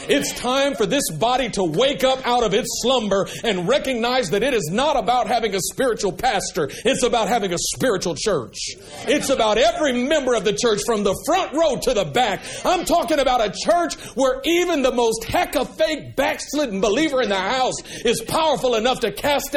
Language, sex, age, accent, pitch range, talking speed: English, male, 50-69, American, 160-245 Hz, 200 wpm